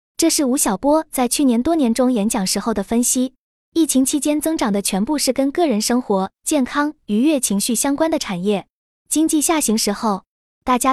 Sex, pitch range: female, 220-300 Hz